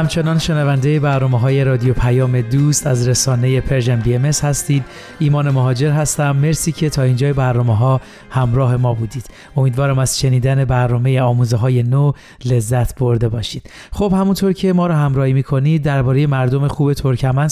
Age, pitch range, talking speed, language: 40-59, 130-150 Hz, 155 wpm, Persian